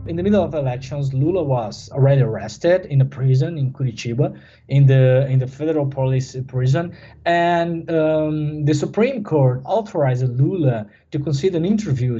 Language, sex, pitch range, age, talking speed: English, male, 130-160 Hz, 20-39, 155 wpm